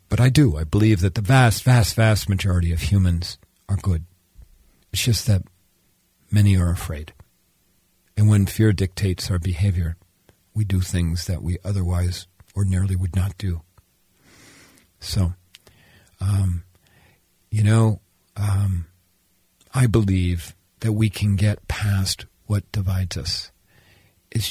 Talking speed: 130 wpm